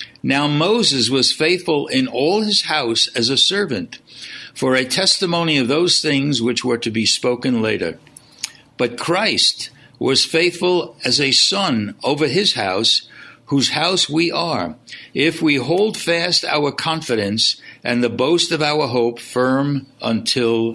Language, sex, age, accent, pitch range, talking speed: English, male, 60-79, American, 120-160 Hz, 145 wpm